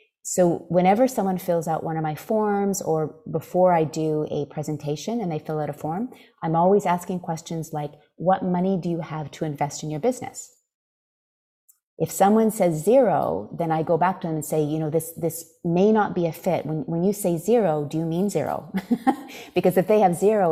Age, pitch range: 30-49, 150-185 Hz